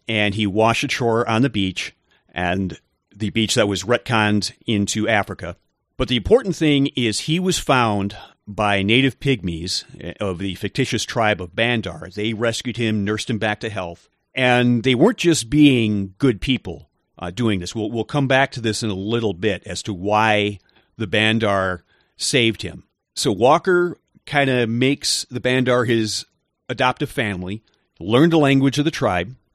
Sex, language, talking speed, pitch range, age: male, English, 170 wpm, 100-130 Hz, 40-59